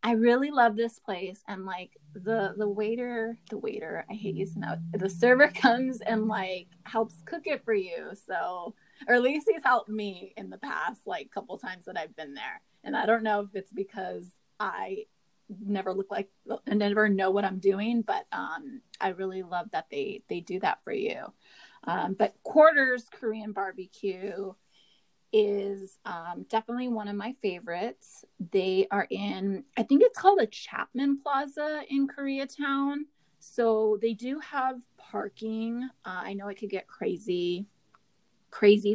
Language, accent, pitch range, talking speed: English, American, 195-245 Hz, 170 wpm